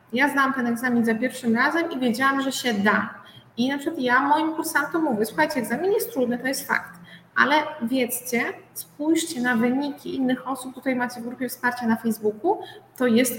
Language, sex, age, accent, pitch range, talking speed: Polish, female, 20-39, native, 240-295 Hz, 190 wpm